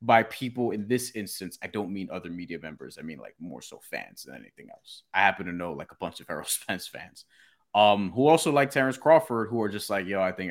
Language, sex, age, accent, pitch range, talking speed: English, male, 30-49, American, 95-130 Hz, 250 wpm